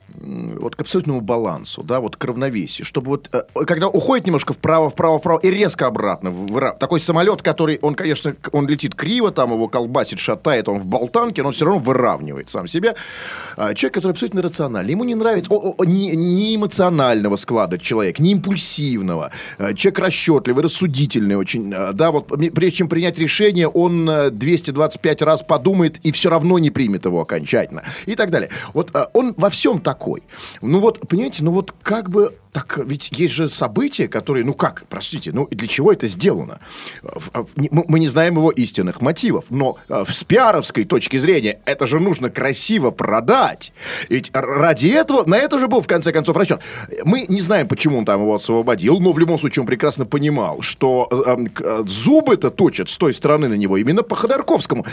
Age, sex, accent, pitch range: 30-49, male, native, 140-195 Hz